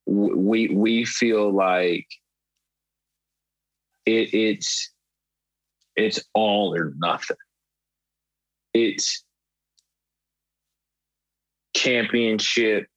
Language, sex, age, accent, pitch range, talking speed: English, male, 30-49, American, 100-130 Hz, 55 wpm